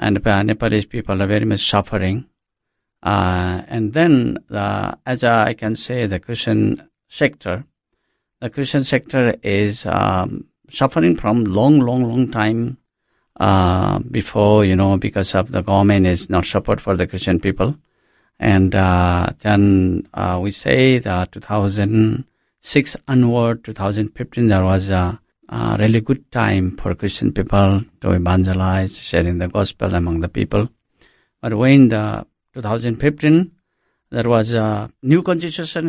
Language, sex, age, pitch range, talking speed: English, male, 50-69, 95-125 Hz, 135 wpm